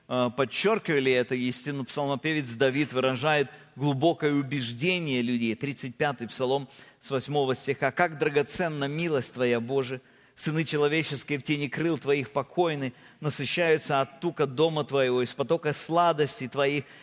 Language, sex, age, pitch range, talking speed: Russian, male, 40-59, 130-170 Hz, 125 wpm